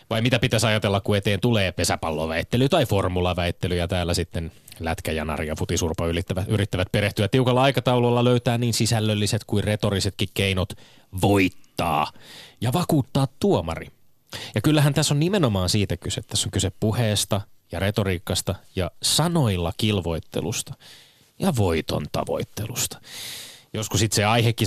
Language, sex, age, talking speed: Finnish, male, 30-49, 130 wpm